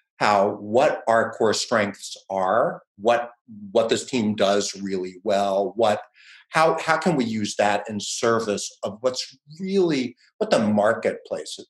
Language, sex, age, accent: English, male, 50-69, American